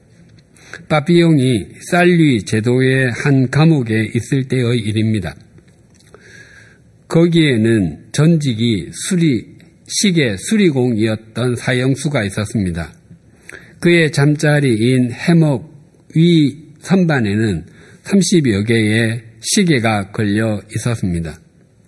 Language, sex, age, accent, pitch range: Korean, male, 50-69, native, 110-150 Hz